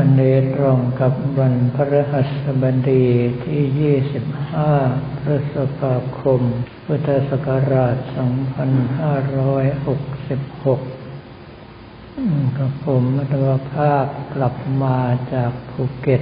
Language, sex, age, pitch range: Thai, male, 60-79, 125-140 Hz